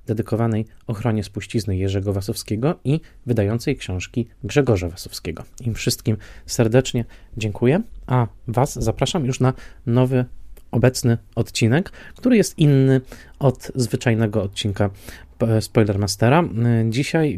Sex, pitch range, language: male, 105-130 Hz, Polish